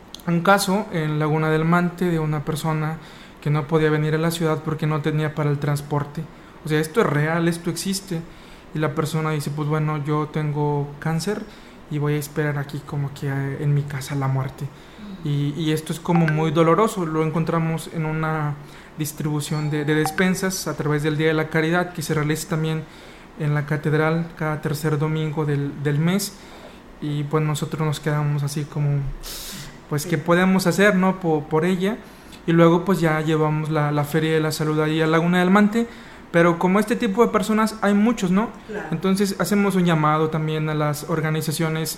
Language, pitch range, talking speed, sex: Spanish, 155-175 Hz, 190 wpm, male